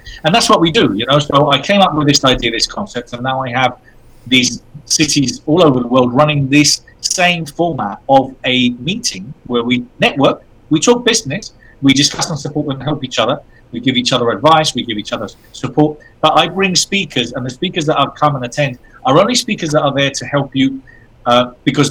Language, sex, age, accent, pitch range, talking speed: English, male, 30-49, British, 120-145 Hz, 220 wpm